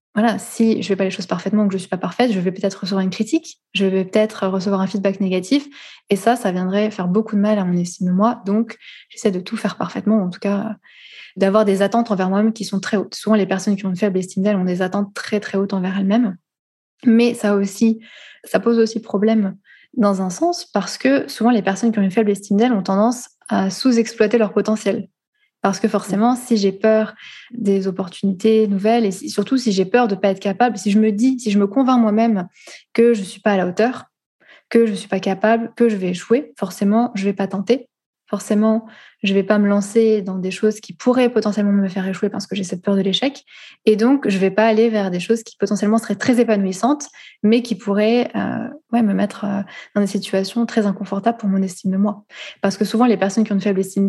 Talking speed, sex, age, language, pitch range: 245 wpm, female, 20-39, French, 195-230 Hz